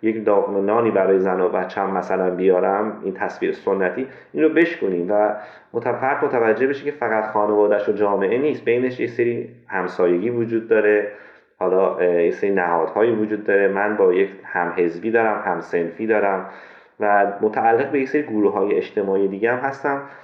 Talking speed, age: 165 wpm, 30-49